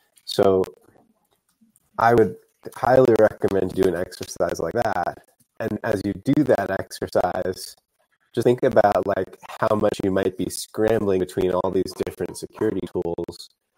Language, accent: English, American